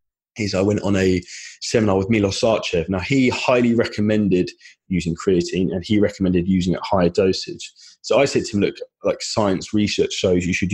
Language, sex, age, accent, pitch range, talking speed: English, male, 20-39, British, 95-115 Hz, 195 wpm